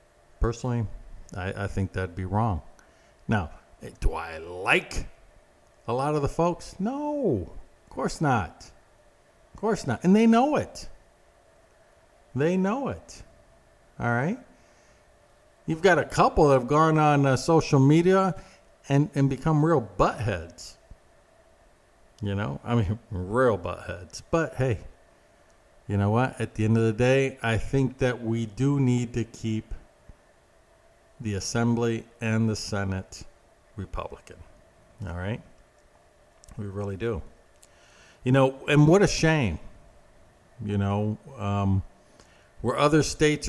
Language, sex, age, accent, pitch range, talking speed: English, male, 50-69, American, 105-135 Hz, 130 wpm